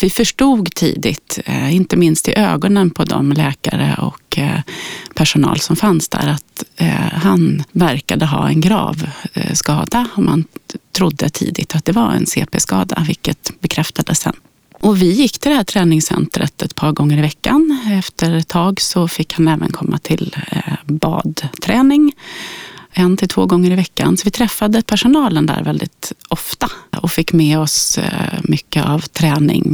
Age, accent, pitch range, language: 30-49, native, 160-210 Hz, Swedish